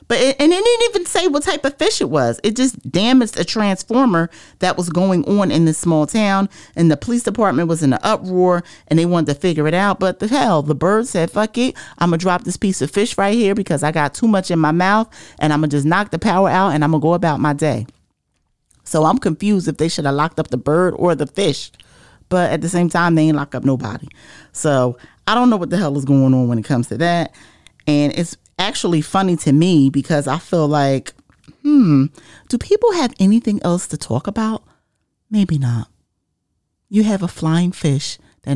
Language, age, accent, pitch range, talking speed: English, 40-59, American, 140-205 Hz, 235 wpm